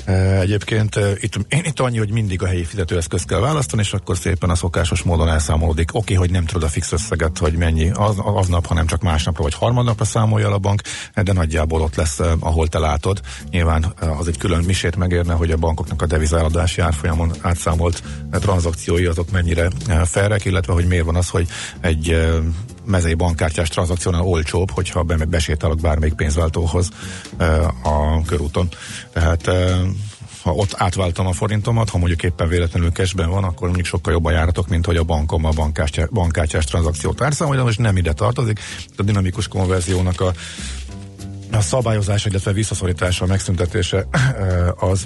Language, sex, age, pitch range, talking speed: Hungarian, male, 50-69, 85-100 Hz, 160 wpm